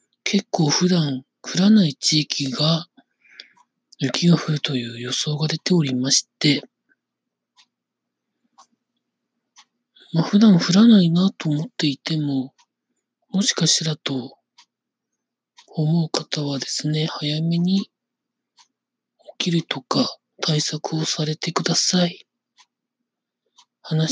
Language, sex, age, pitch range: Japanese, male, 40-59, 150-195 Hz